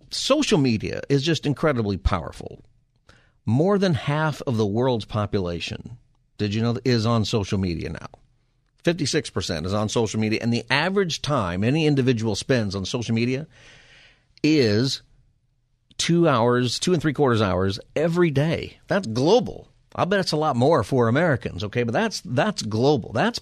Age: 50-69